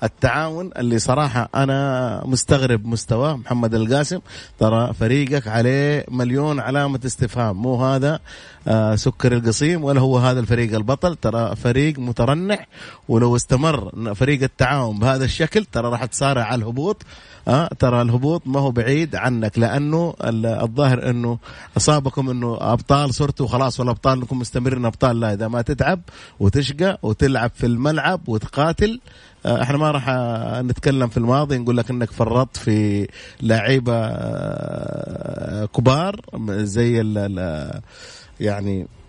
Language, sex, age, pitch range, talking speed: English, male, 30-49, 110-140 Hz, 120 wpm